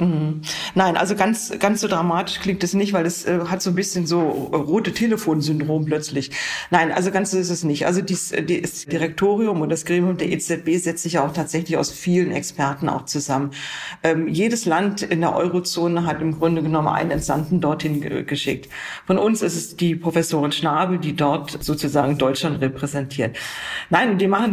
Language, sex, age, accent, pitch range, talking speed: German, female, 40-59, German, 160-190 Hz, 185 wpm